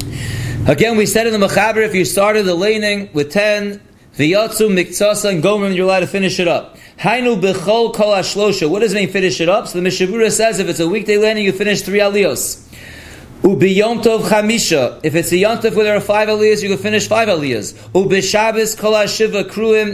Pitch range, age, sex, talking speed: 180-215 Hz, 30-49, male, 200 wpm